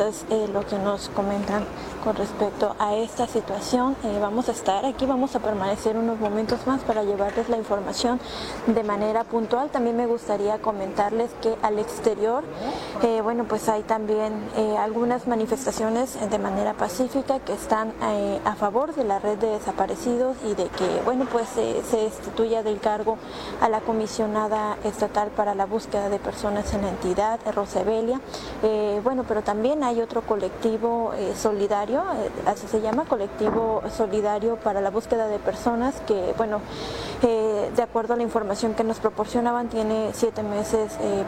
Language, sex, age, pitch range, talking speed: Spanish, female, 20-39, 210-235 Hz, 165 wpm